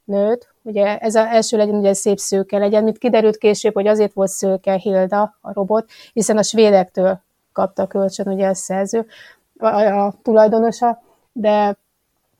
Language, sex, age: Hungarian, female, 30-49